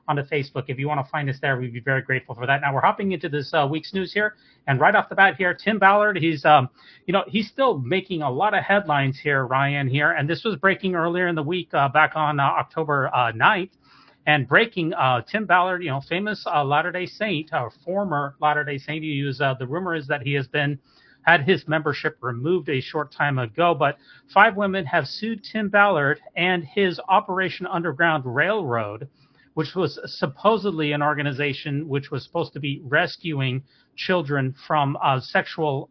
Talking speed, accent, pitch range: 205 wpm, American, 140-185 Hz